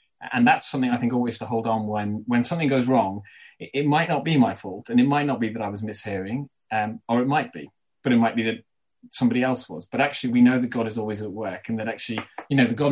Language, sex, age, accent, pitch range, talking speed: English, male, 30-49, British, 115-140 Hz, 280 wpm